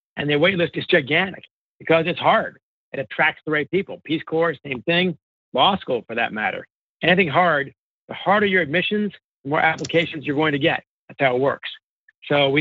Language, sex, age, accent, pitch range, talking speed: English, male, 50-69, American, 145-180 Hz, 200 wpm